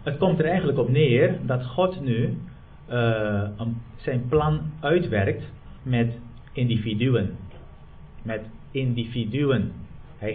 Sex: male